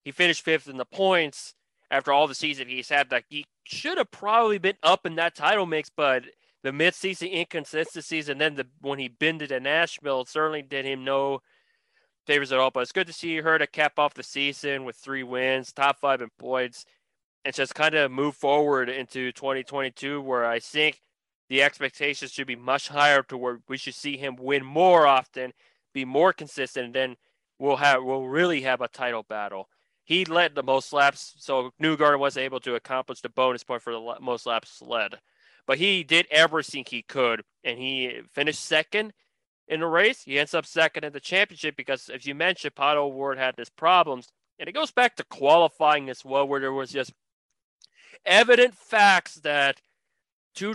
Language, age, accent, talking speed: English, 20-39, American, 195 wpm